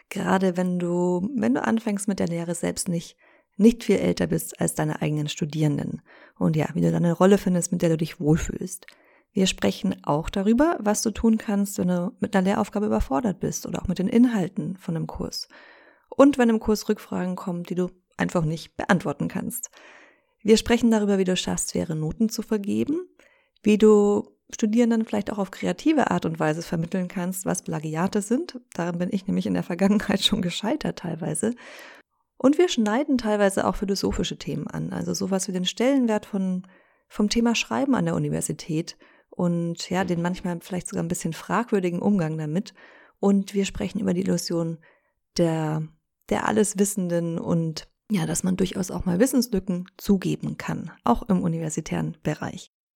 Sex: female